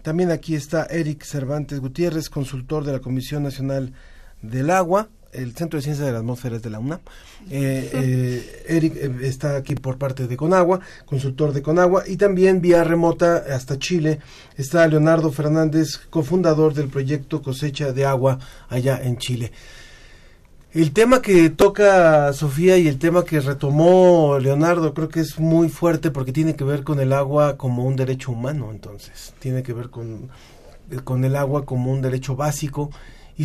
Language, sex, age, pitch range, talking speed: Spanish, male, 40-59, 135-160 Hz, 165 wpm